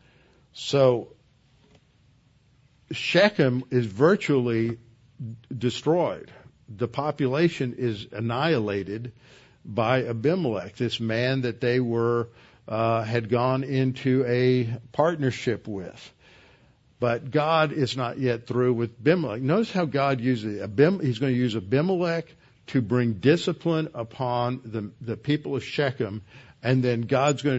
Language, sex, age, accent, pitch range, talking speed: English, male, 60-79, American, 120-140 Hz, 115 wpm